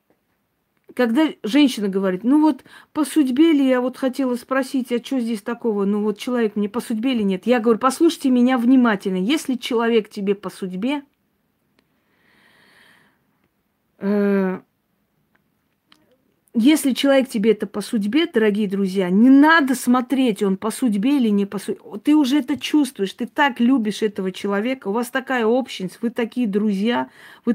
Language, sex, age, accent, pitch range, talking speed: Russian, female, 40-59, native, 210-270 Hz, 150 wpm